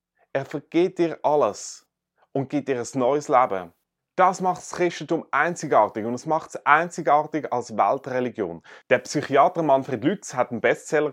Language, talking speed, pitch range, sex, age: German, 155 wpm, 130-180 Hz, male, 30-49